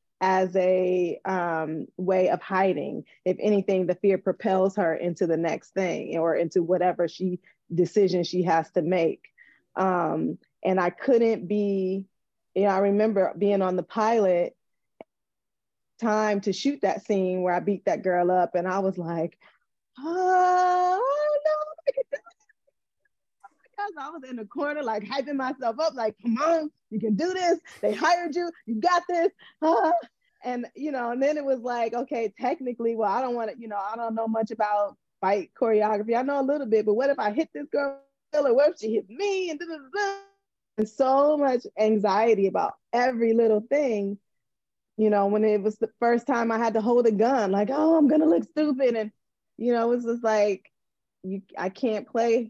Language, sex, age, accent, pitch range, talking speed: English, female, 20-39, American, 190-275 Hz, 185 wpm